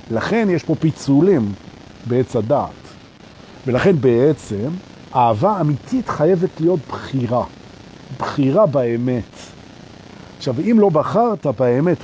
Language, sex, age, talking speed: Hebrew, male, 50-69, 95 wpm